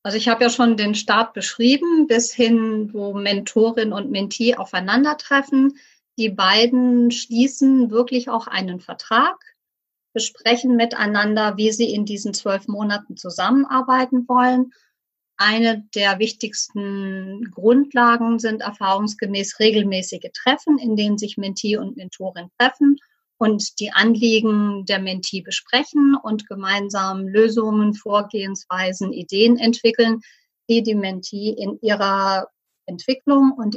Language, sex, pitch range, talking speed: German, female, 205-245 Hz, 115 wpm